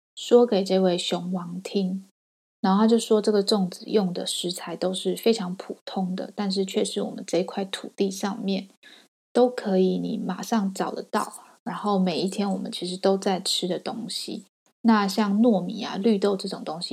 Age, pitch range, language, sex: 20-39, 185-220 Hz, Chinese, female